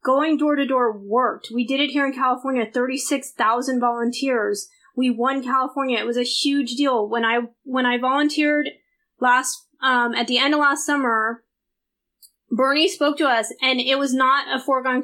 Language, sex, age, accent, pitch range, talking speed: English, female, 20-39, American, 240-285 Hz, 185 wpm